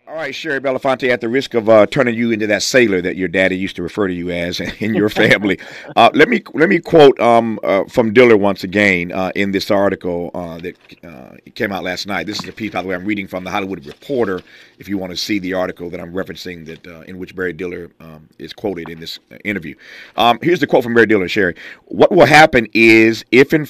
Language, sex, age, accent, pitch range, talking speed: English, male, 50-69, American, 95-130 Hz, 250 wpm